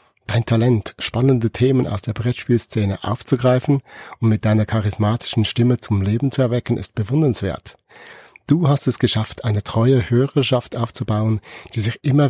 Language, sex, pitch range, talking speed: German, male, 105-130 Hz, 145 wpm